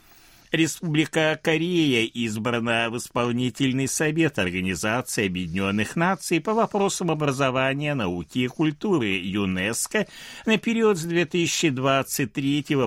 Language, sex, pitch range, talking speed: Russian, male, 105-165 Hz, 95 wpm